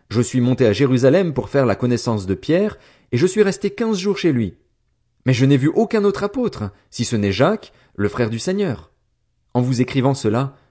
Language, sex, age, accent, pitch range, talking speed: French, male, 40-59, French, 110-160 Hz, 215 wpm